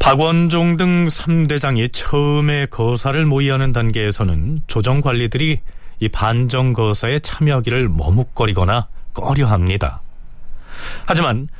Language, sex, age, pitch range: Korean, male, 30-49, 105-150 Hz